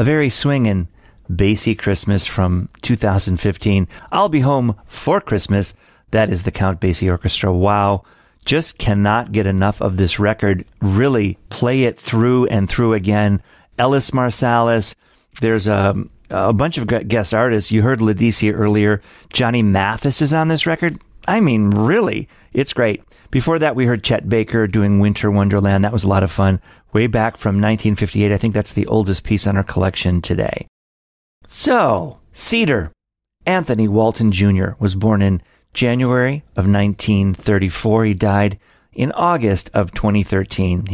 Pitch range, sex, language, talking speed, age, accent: 100-120 Hz, male, English, 150 wpm, 40-59, American